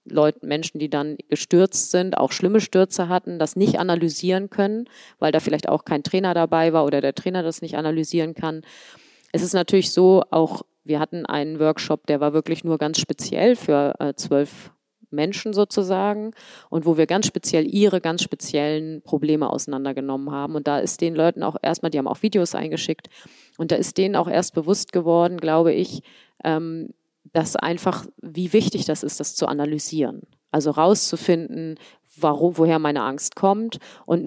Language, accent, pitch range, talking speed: German, German, 150-180 Hz, 175 wpm